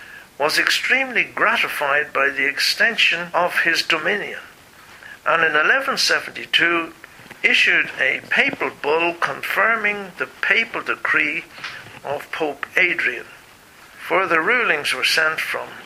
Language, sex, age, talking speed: English, male, 60-79, 105 wpm